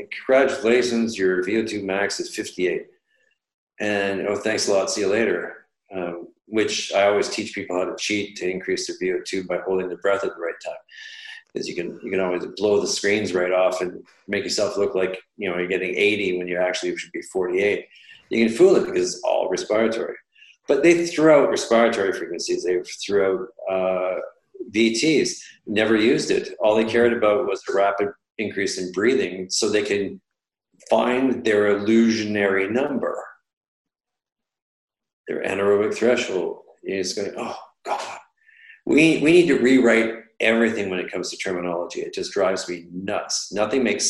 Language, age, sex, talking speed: French, 40-59, male, 170 wpm